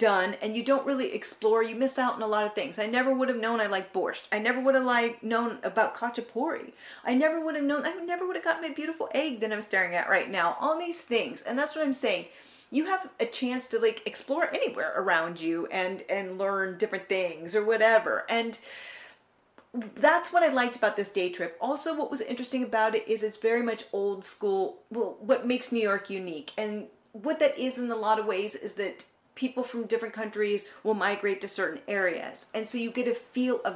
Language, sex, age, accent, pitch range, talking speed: English, female, 40-59, American, 205-265 Hz, 230 wpm